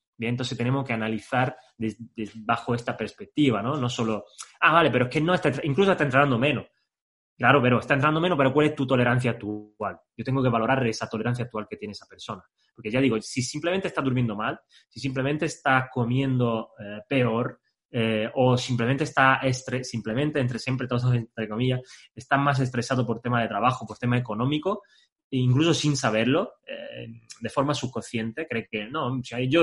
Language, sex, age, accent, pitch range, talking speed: Spanish, male, 20-39, Spanish, 115-145 Hz, 185 wpm